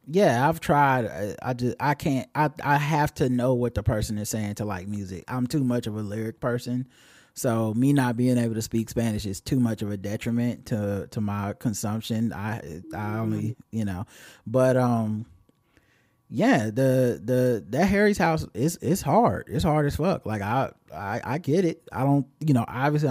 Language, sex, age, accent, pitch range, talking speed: English, male, 20-39, American, 110-140 Hz, 195 wpm